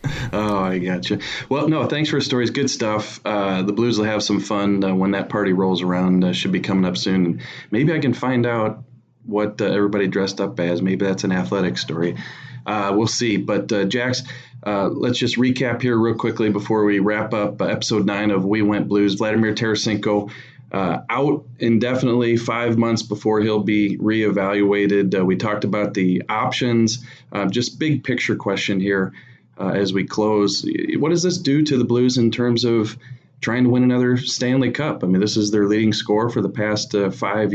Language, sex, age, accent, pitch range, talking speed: English, male, 30-49, American, 100-120 Hz, 200 wpm